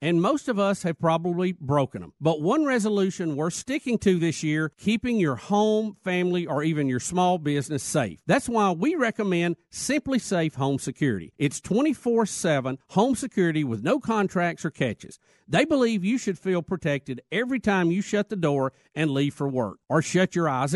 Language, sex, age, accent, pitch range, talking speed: English, male, 50-69, American, 155-220 Hz, 185 wpm